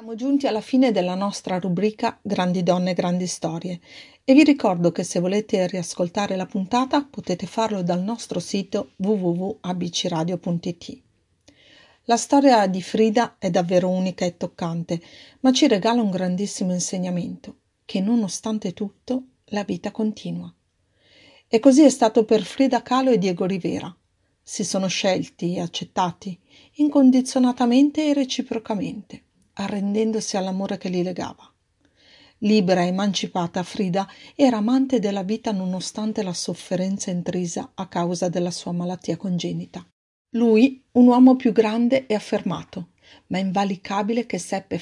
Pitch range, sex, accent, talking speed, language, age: 180-230 Hz, female, native, 135 wpm, Italian, 40-59